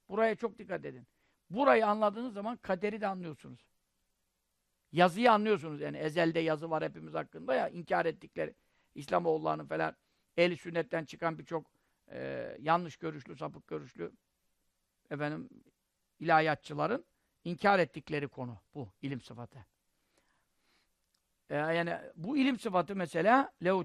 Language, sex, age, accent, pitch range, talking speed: Turkish, male, 50-69, native, 155-215 Hz, 120 wpm